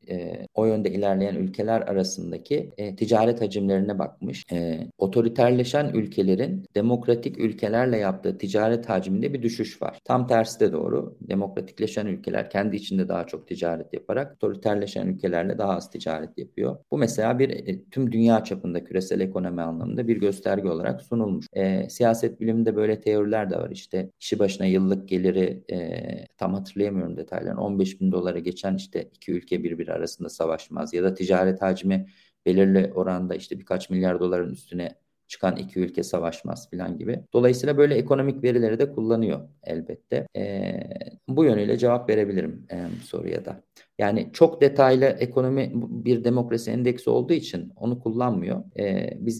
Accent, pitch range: native, 95-115 Hz